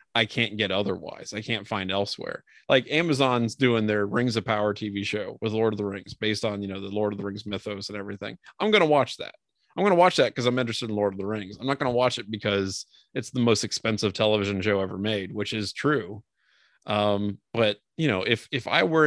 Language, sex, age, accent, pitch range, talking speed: English, male, 30-49, American, 105-125 Hz, 245 wpm